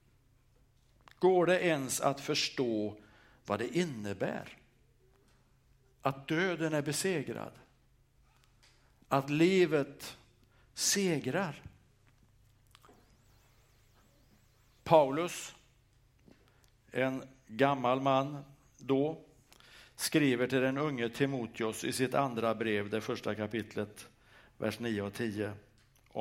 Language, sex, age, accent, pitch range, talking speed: Swedish, male, 60-79, Norwegian, 115-140 Hz, 80 wpm